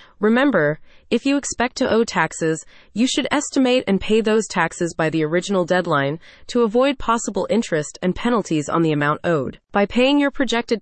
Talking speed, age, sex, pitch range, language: 180 wpm, 30-49, female, 170-235 Hz, English